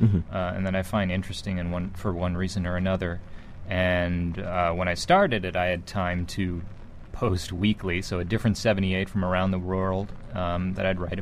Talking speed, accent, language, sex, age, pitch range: 205 wpm, American, English, male, 30-49, 90-105 Hz